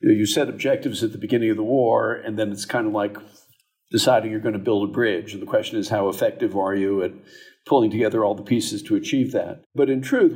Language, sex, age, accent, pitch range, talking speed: English, male, 50-69, American, 110-145 Hz, 245 wpm